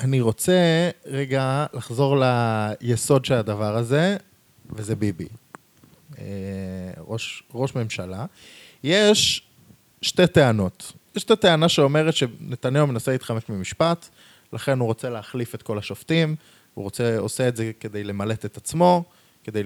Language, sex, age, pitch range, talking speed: Hebrew, male, 20-39, 110-150 Hz, 125 wpm